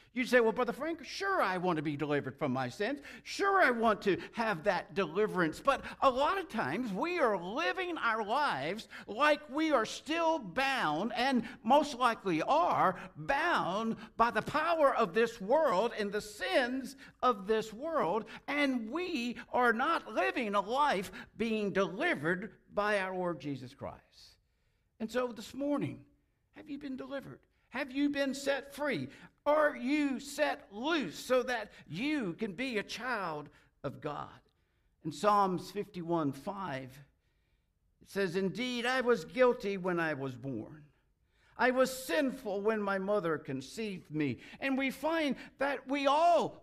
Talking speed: 155 wpm